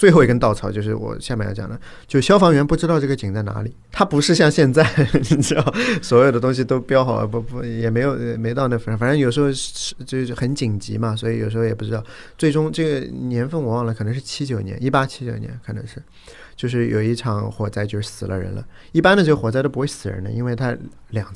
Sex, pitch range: male, 110-135 Hz